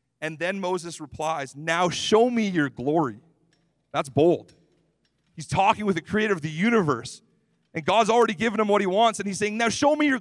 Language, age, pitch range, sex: English, 40-59, 135-180 Hz, male